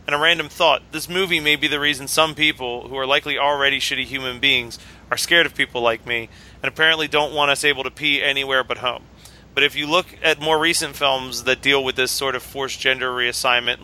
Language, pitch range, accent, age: English, 130-155 Hz, American, 30-49